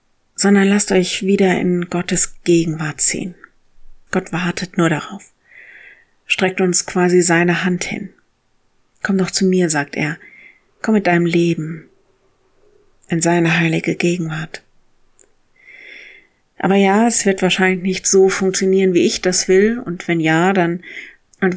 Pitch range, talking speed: 165-190 Hz, 135 wpm